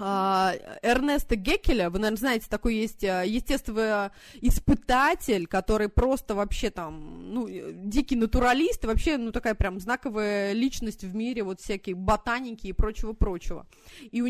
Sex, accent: female, native